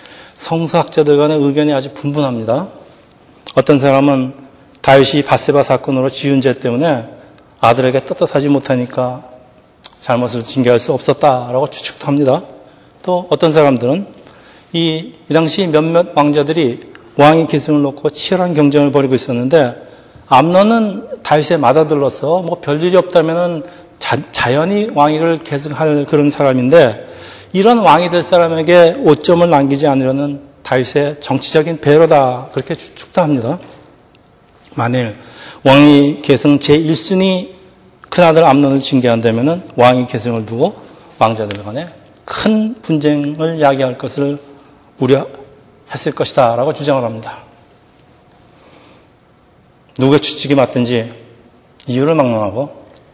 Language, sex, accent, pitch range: Korean, male, native, 130-160 Hz